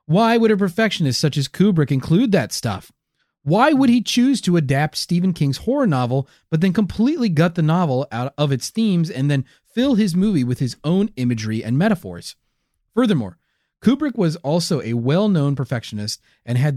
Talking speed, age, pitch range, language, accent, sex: 180 wpm, 30-49, 120-180 Hz, English, American, male